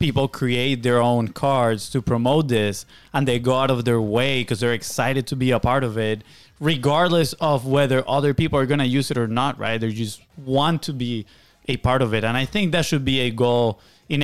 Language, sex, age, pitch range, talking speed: English, male, 20-39, 120-145 Hz, 230 wpm